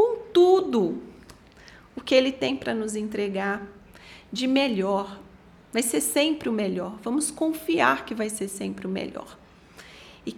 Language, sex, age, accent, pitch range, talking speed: Portuguese, female, 30-49, Brazilian, 210-265 Hz, 140 wpm